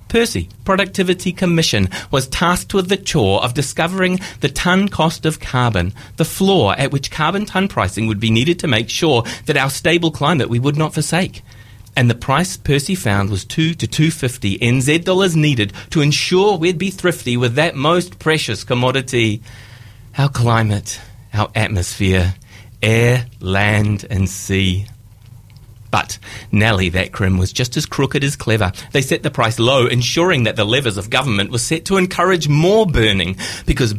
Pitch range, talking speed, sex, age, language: 105-155 Hz, 165 wpm, male, 30-49, English